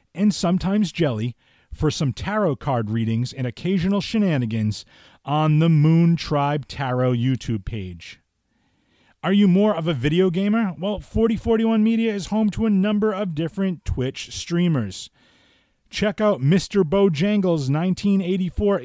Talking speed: 135 wpm